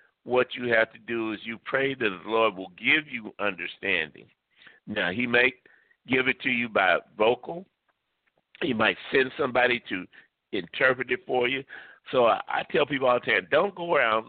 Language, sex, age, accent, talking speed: English, male, 60-79, American, 185 wpm